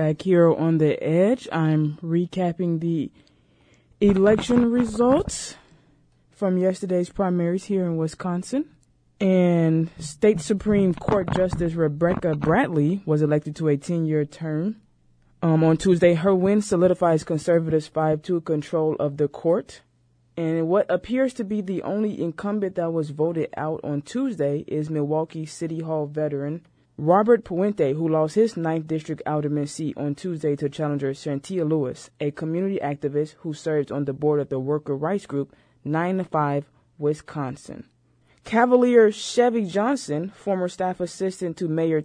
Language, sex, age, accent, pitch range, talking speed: English, female, 20-39, American, 150-185 Hz, 140 wpm